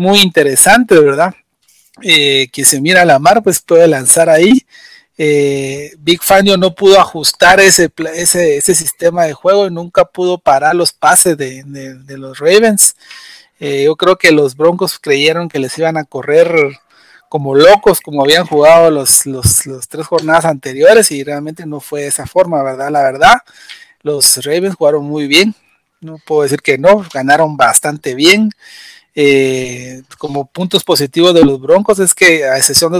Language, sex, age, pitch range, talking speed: Spanish, male, 40-59, 145-180 Hz, 175 wpm